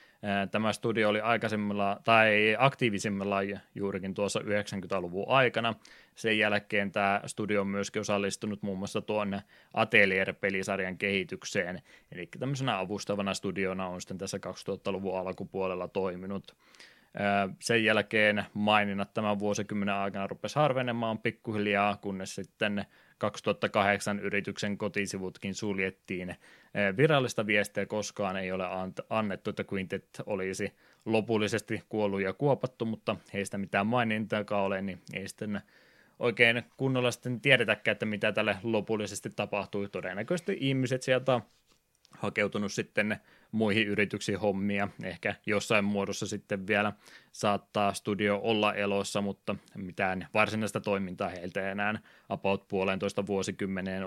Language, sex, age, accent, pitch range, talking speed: Finnish, male, 20-39, native, 100-110 Hz, 115 wpm